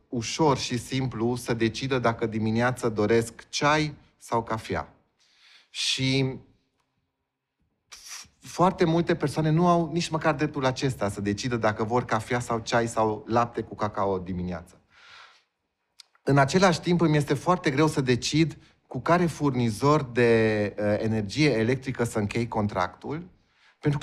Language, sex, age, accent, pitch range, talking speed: Romanian, male, 30-49, native, 115-155 Hz, 130 wpm